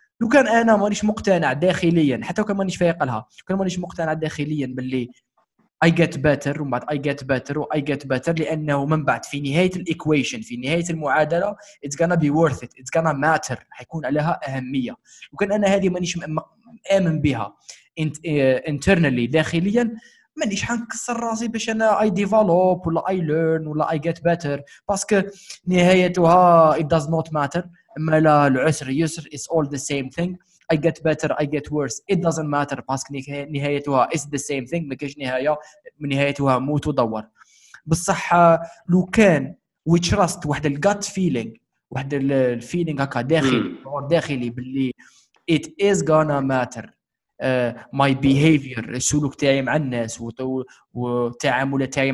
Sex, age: male, 20-39